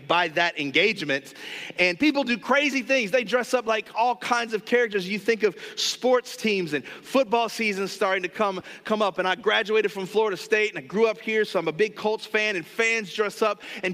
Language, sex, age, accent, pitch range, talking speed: English, male, 40-59, American, 195-250 Hz, 220 wpm